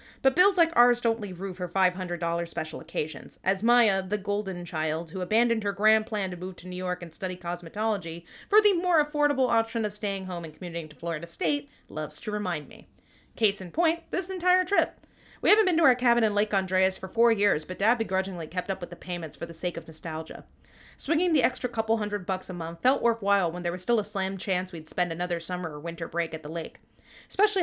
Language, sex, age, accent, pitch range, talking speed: English, female, 30-49, American, 175-235 Hz, 230 wpm